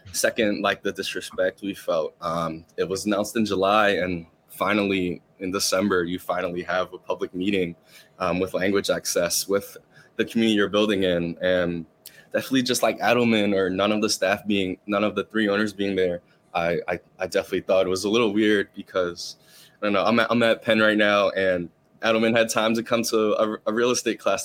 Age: 20-39